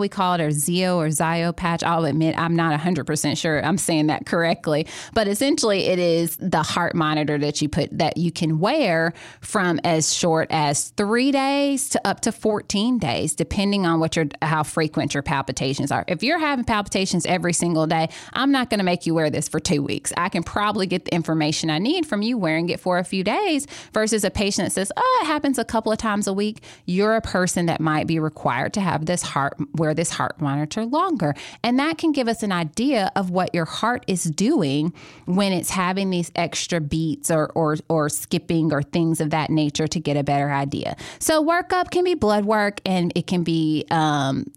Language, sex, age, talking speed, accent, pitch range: English, female, 20-39, 215 wpm, American, 155-205 Hz